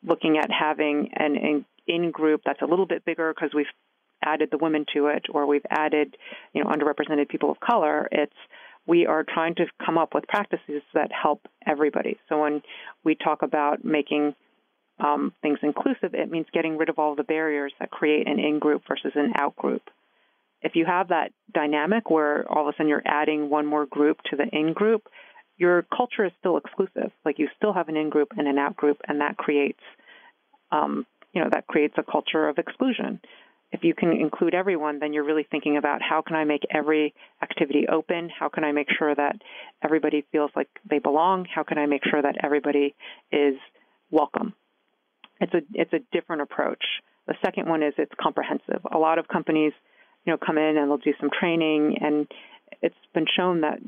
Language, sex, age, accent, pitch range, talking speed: English, female, 40-59, American, 150-165 Hz, 195 wpm